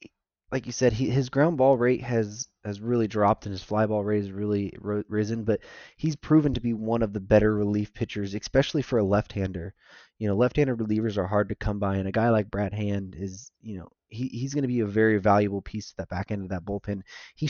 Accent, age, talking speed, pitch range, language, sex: American, 20-39, 245 wpm, 100-120 Hz, English, male